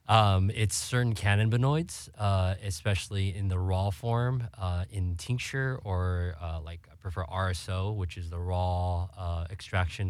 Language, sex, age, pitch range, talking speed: English, male, 20-39, 90-100 Hz, 150 wpm